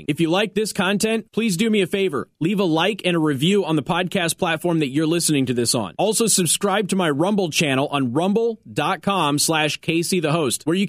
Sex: male